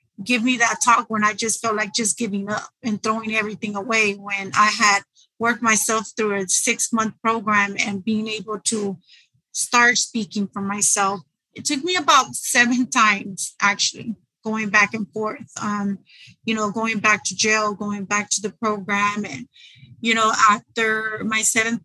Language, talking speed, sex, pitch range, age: English, 175 wpm, female, 205-230 Hz, 30-49